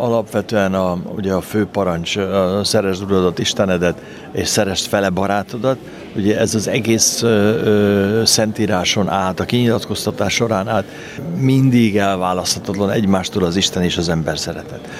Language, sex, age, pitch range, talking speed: Hungarian, male, 60-79, 90-110 Hz, 130 wpm